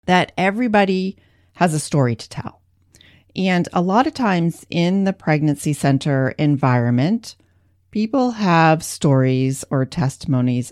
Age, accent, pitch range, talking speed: 40-59, American, 130-180 Hz, 125 wpm